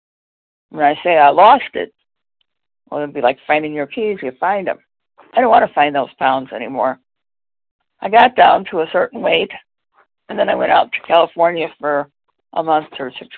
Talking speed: 195 wpm